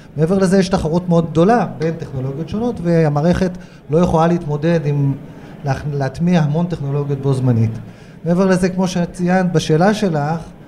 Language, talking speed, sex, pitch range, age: Hebrew, 145 wpm, male, 140-175 Hz, 30-49